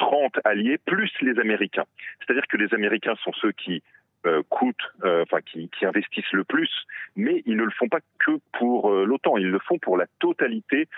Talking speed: 195 wpm